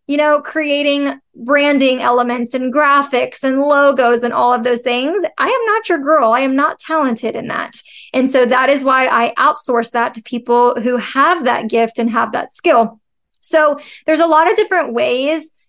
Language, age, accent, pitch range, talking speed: English, 20-39, American, 240-285 Hz, 190 wpm